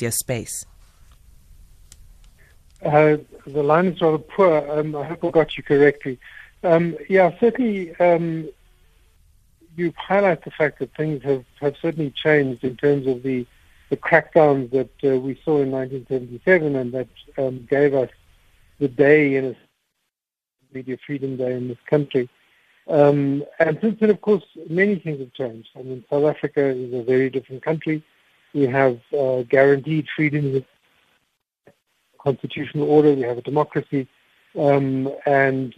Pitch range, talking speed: 130-155 Hz, 145 wpm